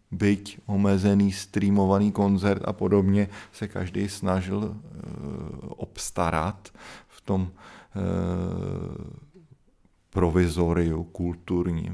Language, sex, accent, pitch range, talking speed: Czech, male, native, 90-100 Hz, 70 wpm